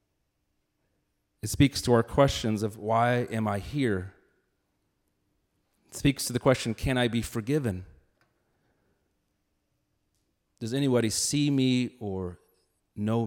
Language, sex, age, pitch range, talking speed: English, male, 40-59, 100-135 Hz, 115 wpm